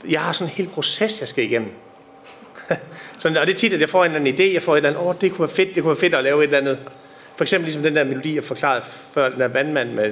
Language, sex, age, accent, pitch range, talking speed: Danish, male, 30-49, native, 150-200 Hz, 310 wpm